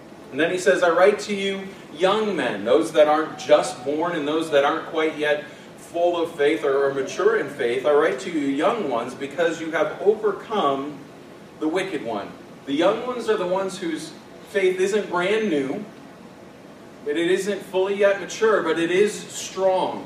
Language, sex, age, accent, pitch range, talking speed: English, male, 40-59, American, 150-210 Hz, 190 wpm